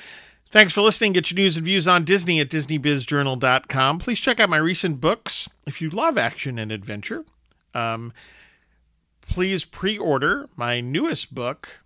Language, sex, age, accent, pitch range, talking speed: English, male, 50-69, American, 125-175 Hz, 150 wpm